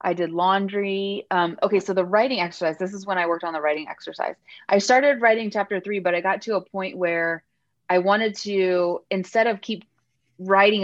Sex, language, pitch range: female, English, 175-210 Hz